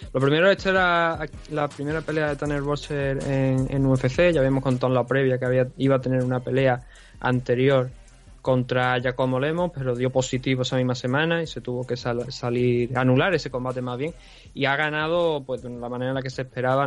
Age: 20-39